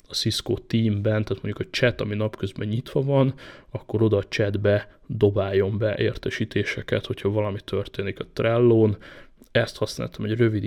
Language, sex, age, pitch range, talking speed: Hungarian, male, 20-39, 105-115 Hz, 150 wpm